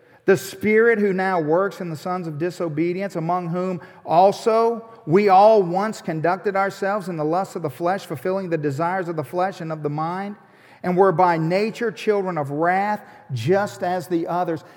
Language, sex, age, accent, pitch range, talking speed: English, male, 50-69, American, 185-245 Hz, 185 wpm